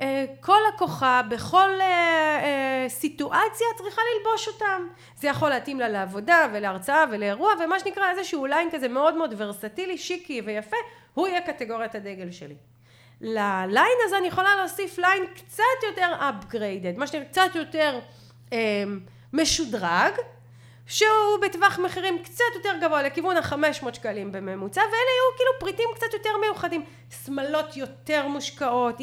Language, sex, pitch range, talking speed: Hebrew, female, 245-370 Hz, 130 wpm